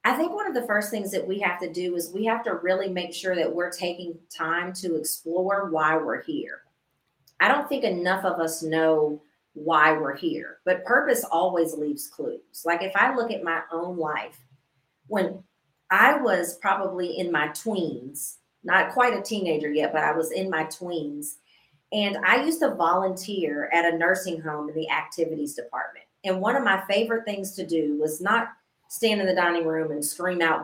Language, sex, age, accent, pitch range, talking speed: English, female, 40-59, American, 160-200 Hz, 195 wpm